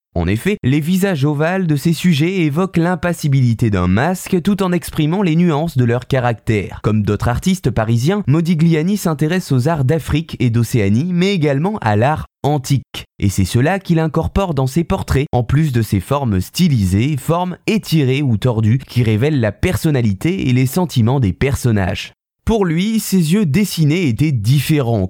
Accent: French